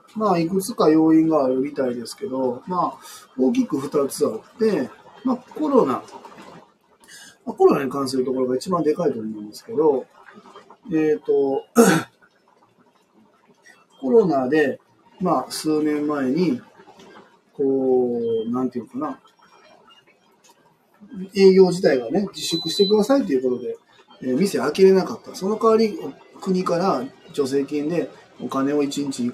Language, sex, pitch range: Japanese, male, 130-205 Hz